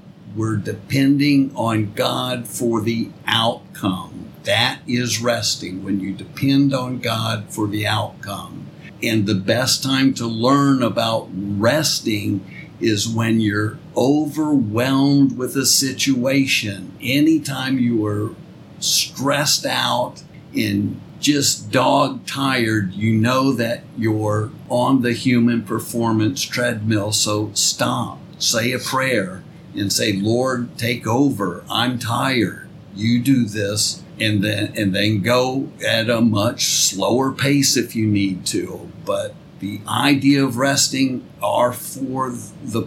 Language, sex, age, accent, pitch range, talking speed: English, male, 50-69, American, 110-135 Hz, 125 wpm